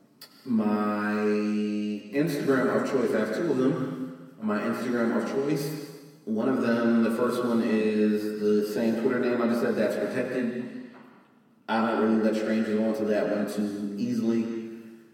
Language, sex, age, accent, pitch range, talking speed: English, male, 30-49, American, 100-115 Hz, 160 wpm